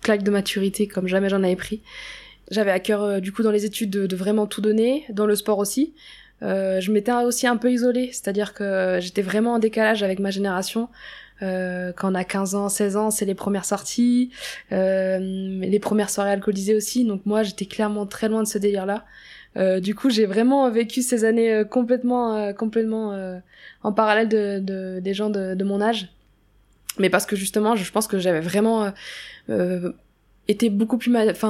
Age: 20-39